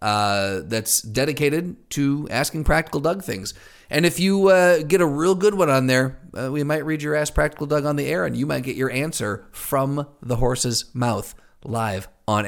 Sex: male